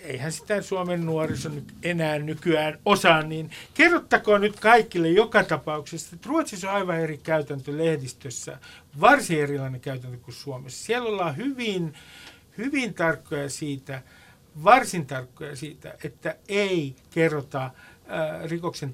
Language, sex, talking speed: Finnish, male, 125 wpm